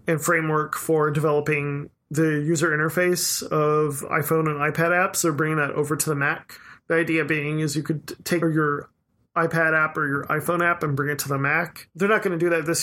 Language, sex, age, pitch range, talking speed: English, male, 20-39, 145-165 Hz, 215 wpm